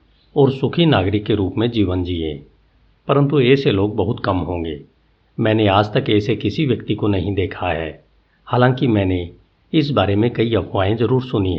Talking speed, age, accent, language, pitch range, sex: 170 wpm, 50-69, native, Hindi, 95-120 Hz, male